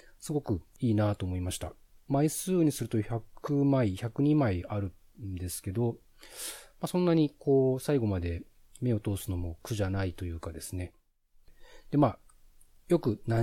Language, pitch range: Japanese, 100-130 Hz